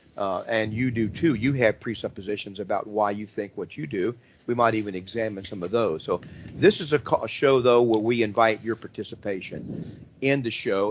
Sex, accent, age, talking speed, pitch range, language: male, American, 50-69, 205 wpm, 105-135 Hz, English